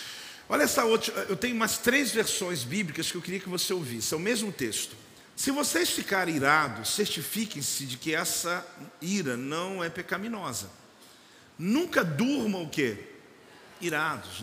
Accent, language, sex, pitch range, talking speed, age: Brazilian, Portuguese, male, 140-205 Hz, 150 wpm, 50-69